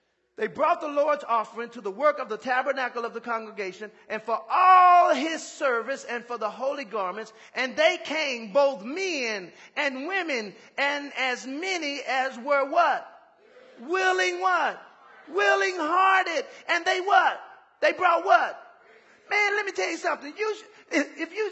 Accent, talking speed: American, 160 wpm